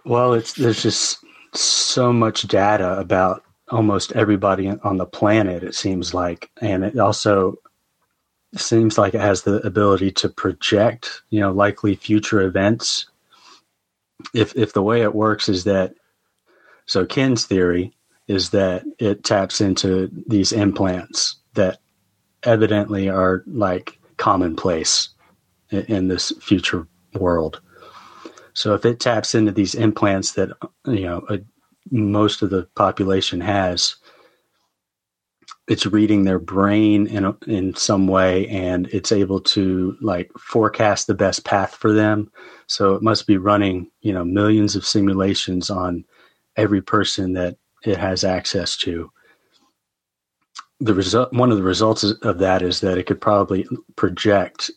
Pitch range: 95-110 Hz